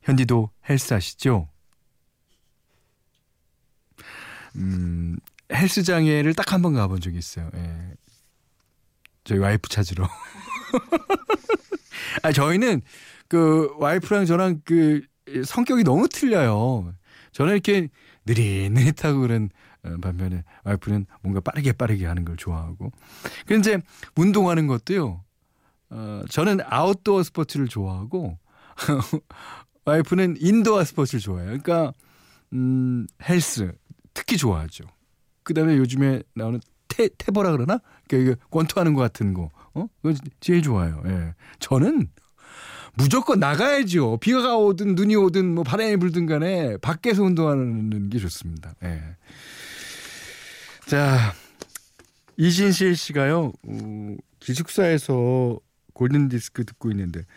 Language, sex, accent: Korean, male, native